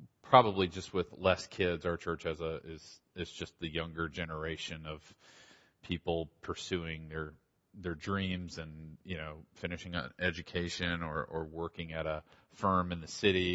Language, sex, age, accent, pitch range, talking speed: English, male, 40-59, American, 85-100 Hz, 160 wpm